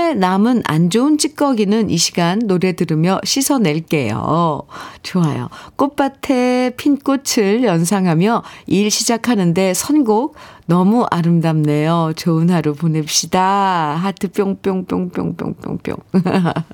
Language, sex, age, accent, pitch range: Korean, female, 50-69, native, 165-235 Hz